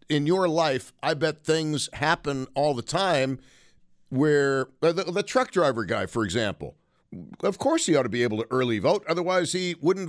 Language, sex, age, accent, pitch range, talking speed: English, male, 50-69, American, 125-160 Hz, 185 wpm